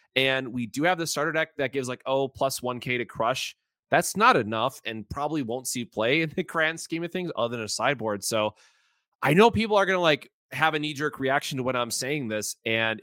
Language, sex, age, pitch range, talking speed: English, male, 30-49, 120-165 Hz, 245 wpm